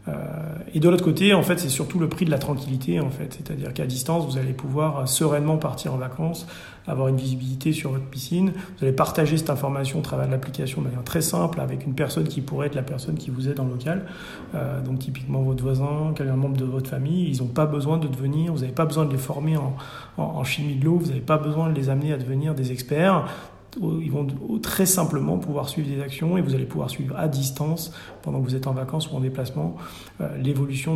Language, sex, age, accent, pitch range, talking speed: French, male, 40-59, French, 135-155 Hz, 235 wpm